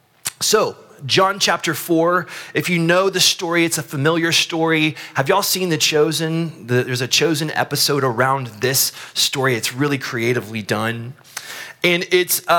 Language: English